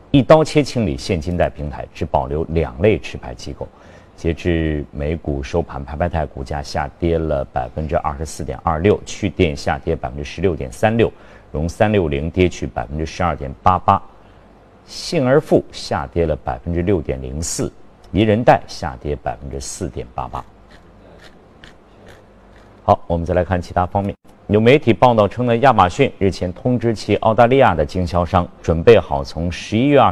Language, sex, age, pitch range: Chinese, male, 50-69, 80-105 Hz